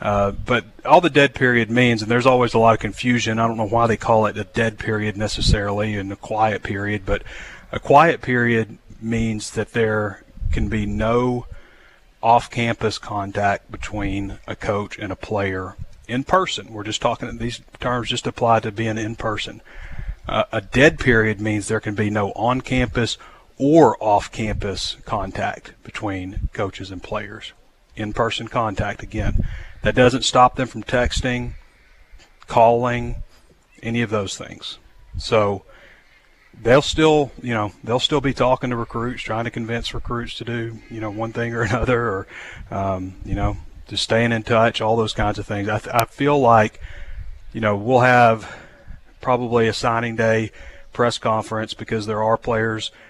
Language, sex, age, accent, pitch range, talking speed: English, male, 40-59, American, 105-120 Hz, 165 wpm